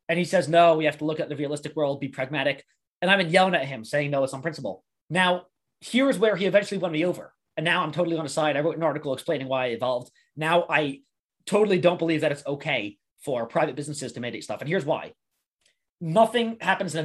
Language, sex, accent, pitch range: English, male, American, 150-200 Hz